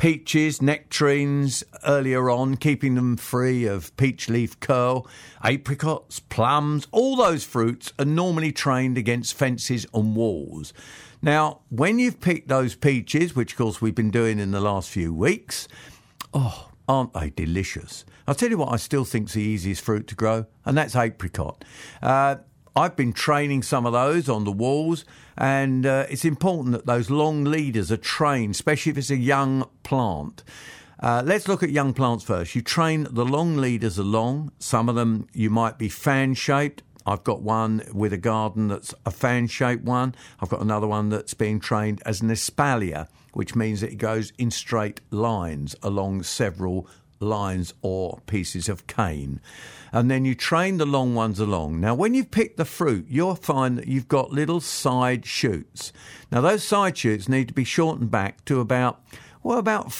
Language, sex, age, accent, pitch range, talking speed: English, male, 50-69, British, 110-140 Hz, 175 wpm